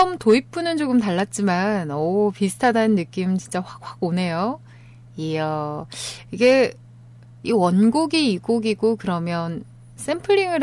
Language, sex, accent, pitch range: Korean, female, native, 160-245 Hz